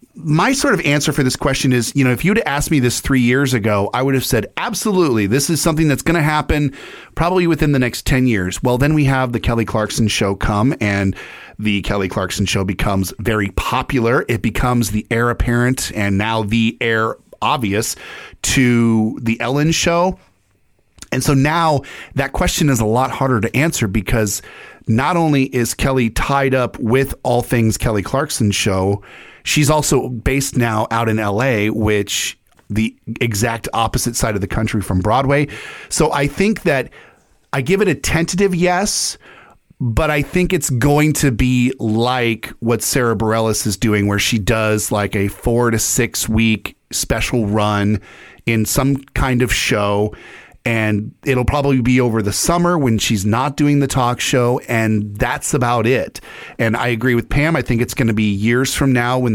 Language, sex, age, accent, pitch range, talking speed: English, male, 30-49, American, 110-140 Hz, 185 wpm